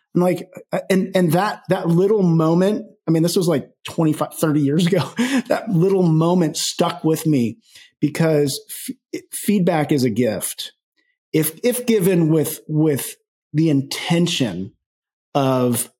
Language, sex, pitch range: English, male, 135-175 Hz